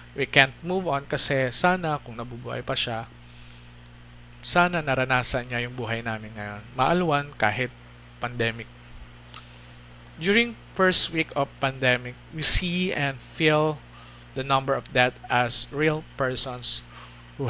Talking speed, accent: 125 wpm, native